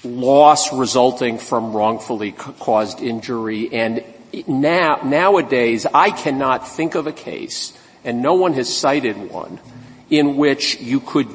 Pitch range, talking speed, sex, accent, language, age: 130-185 Hz, 130 wpm, male, American, English, 50-69